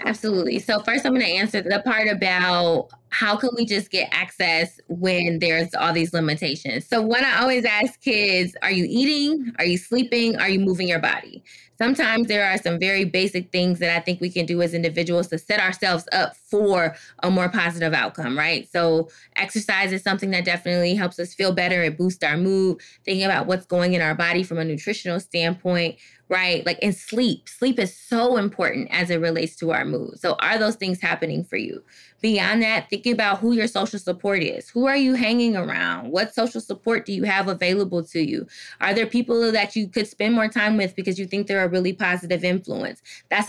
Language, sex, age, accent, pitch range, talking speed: English, female, 20-39, American, 175-210 Hz, 210 wpm